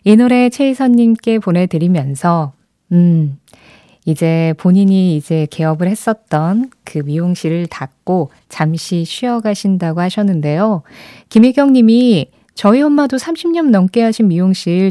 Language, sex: Korean, female